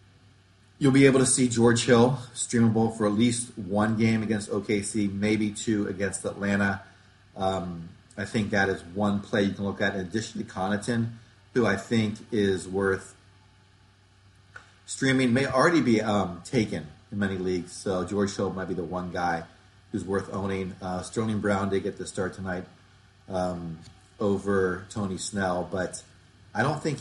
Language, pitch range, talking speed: English, 95-115 Hz, 165 wpm